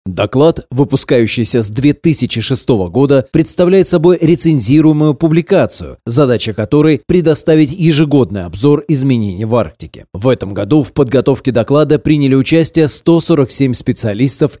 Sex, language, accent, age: male, Russian, native, 30-49